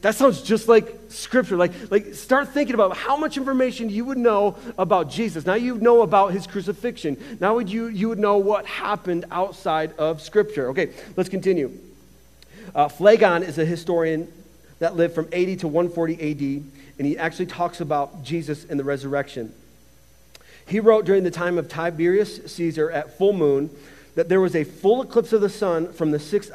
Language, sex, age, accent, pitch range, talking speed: English, male, 40-59, American, 175-225 Hz, 185 wpm